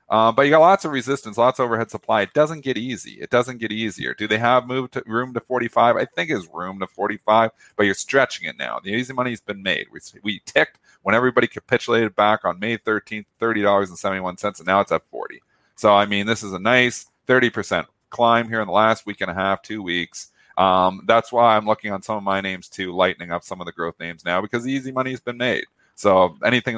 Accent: American